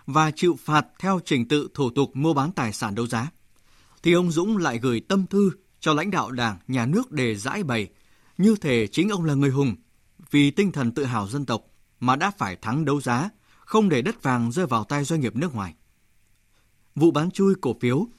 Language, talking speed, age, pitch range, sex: Vietnamese, 220 wpm, 20-39, 115-165 Hz, male